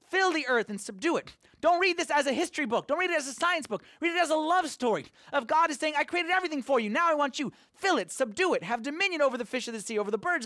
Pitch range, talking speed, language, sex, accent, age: 190-300 Hz, 310 wpm, English, male, American, 30-49